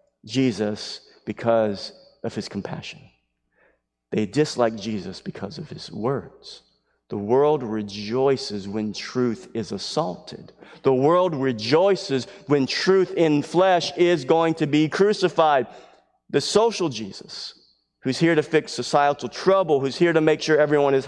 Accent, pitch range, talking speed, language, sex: American, 135-190 Hz, 135 wpm, English, male